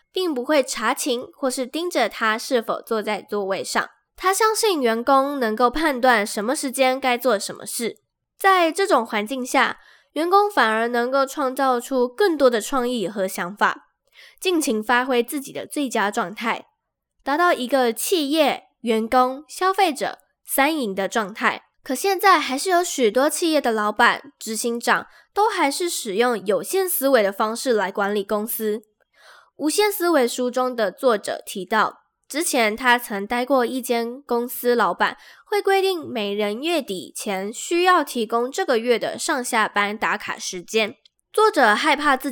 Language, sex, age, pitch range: Chinese, female, 10-29, 230-305 Hz